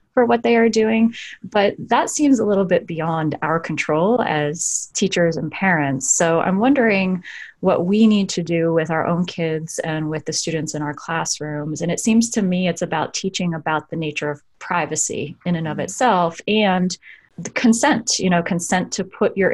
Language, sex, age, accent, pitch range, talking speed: English, female, 30-49, American, 165-210 Hz, 195 wpm